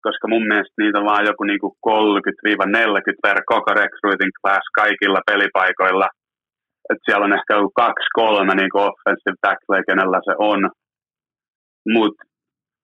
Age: 30-49